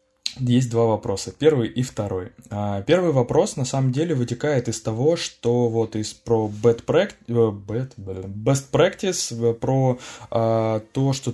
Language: Russian